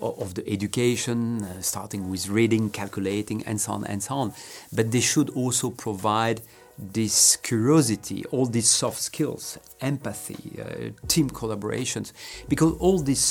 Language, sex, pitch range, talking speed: English, male, 110-140 Hz, 145 wpm